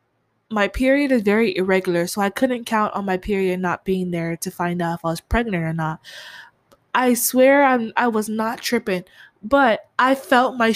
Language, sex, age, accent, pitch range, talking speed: English, female, 20-39, American, 185-255 Hz, 195 wpm